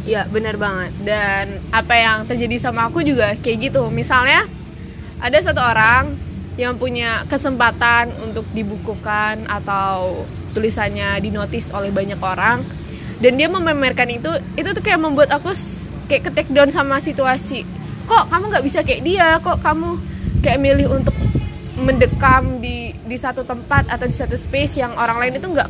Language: Indonesian